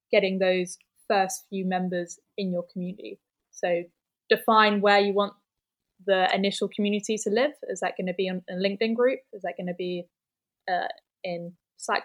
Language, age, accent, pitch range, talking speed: English, 10-29, British, 180-200 Hz, 175 wpm